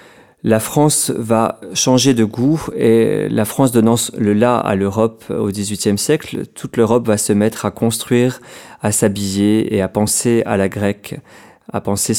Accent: French